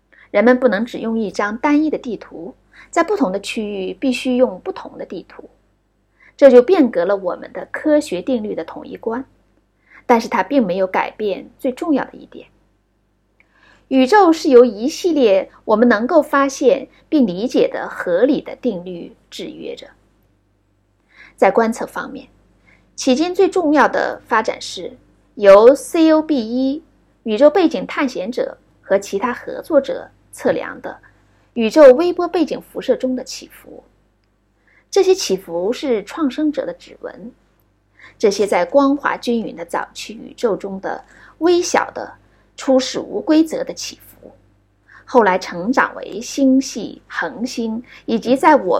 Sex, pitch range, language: female, 220-305 Hz, Chinese